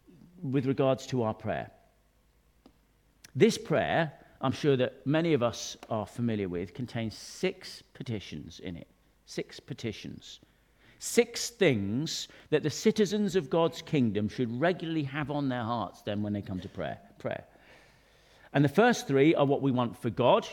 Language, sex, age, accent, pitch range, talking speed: English, male, 50-69, British, 120-160 Hz, 160 wpm